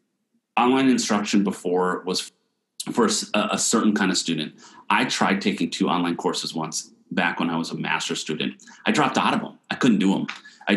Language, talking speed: English, 190 wpm